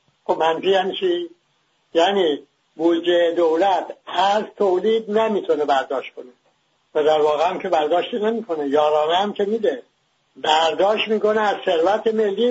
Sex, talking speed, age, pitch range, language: male, 130 wpm, 60-79, 165-215 Hz, English